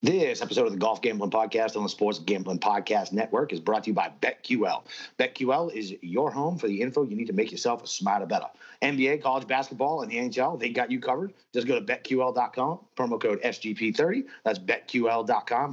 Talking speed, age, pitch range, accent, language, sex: 200 wpm, 40-59, 110-140 Hz, American, English, male